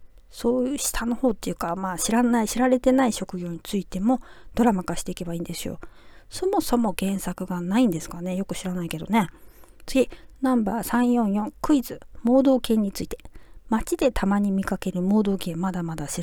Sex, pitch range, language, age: female, 190-260 Hz, Japanese, 40-59